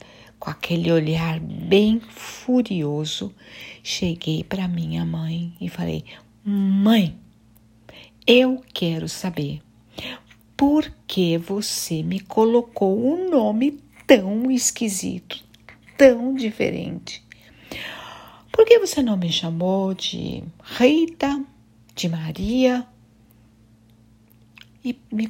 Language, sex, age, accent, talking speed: Portuguese, female, 60-79, Brazilian, 90 wpm